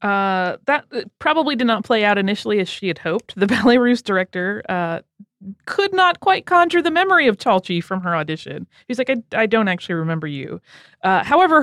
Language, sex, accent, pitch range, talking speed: English, female, American, 175-235 Hz, 195 wpm